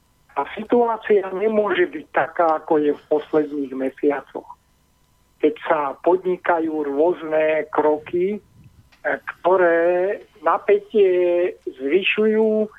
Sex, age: male, 50-69